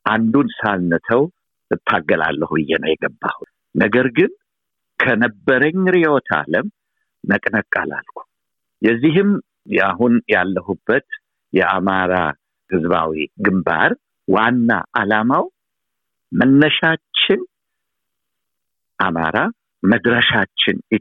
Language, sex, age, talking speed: Amharic, male, 60-79, 60 wpm